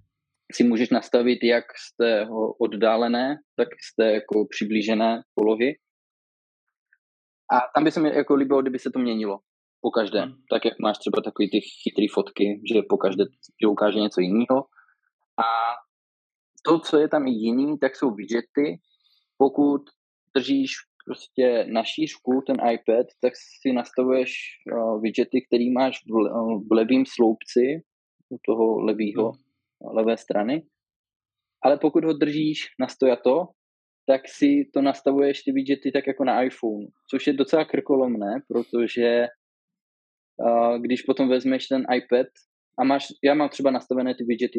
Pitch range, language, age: 115-135 Hz, Czech, 20-39